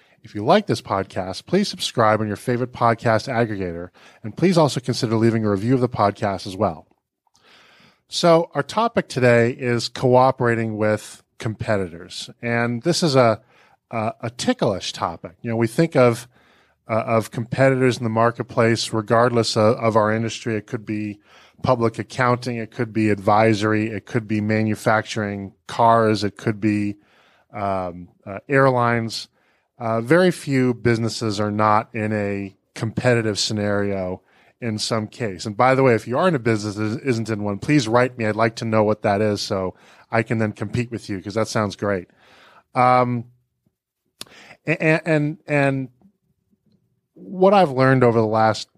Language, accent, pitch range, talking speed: English, American, 105-125 Hz, 165 wpm